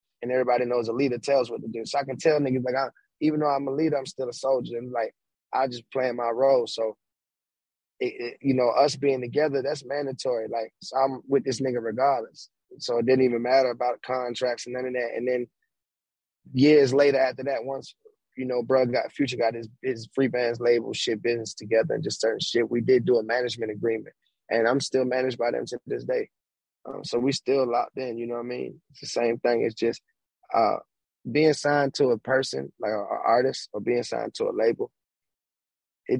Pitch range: 115-135 Hz